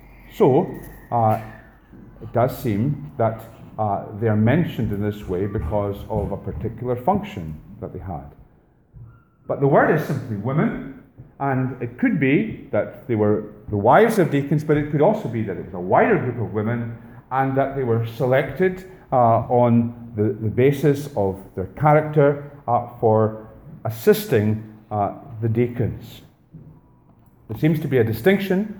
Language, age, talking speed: English, 40-59, 160 wpm